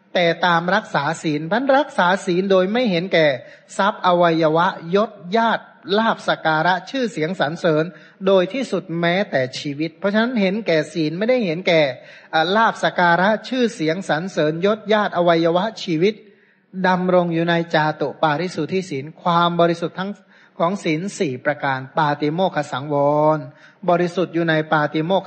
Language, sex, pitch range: Thai, male, 155-190 Hz